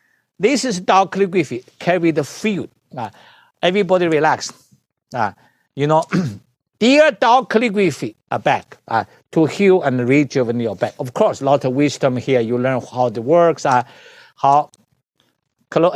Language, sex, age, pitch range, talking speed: English, male, 50-69, 135-185 Hz, 150 wpm